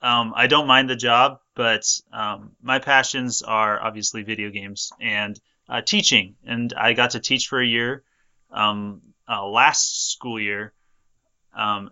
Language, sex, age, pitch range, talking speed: English, male, 20-39, 110-130 Hz, 155 wpm